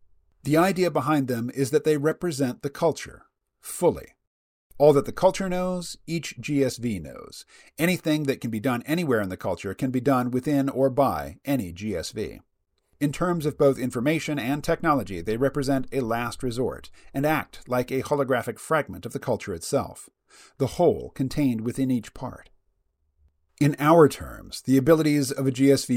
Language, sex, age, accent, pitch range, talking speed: English, male, 40-59, American, 120-155 Hz, 165 wpm